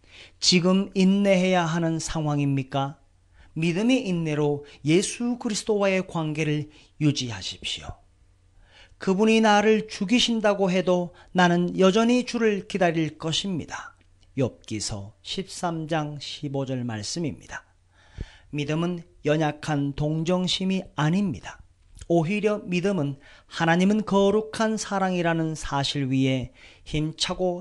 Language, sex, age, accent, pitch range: Korean, male, 40-59, native, 135-195 Hz